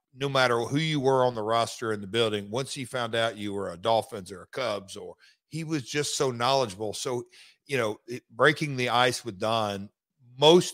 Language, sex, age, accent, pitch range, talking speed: English, male, 50-69, American, 110-135 Hz, 210 wpm